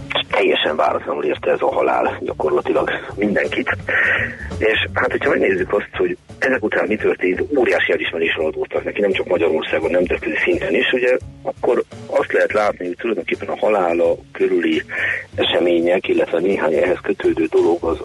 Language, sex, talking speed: Hungarian, male, 155 wpm